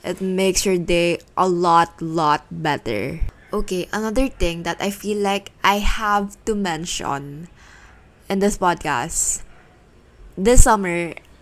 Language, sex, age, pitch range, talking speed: Filipino, female, 20-39, 165-195 Hz, 125 wpm